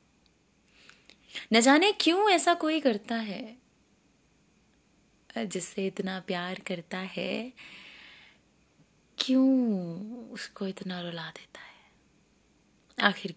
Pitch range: 185-230 Hz